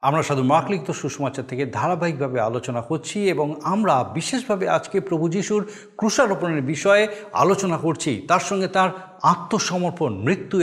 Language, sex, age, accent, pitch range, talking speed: Bengali, male, 50-69, native, 150-205 Hz, 125 wpm